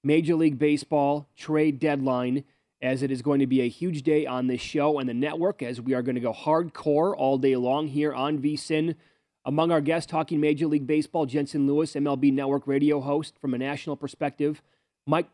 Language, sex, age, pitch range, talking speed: English, male, 30-49, 135-160 Hz, 200 wpm